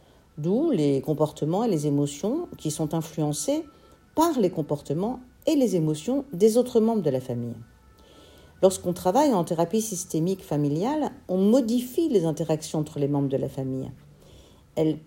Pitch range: 150-205 Hz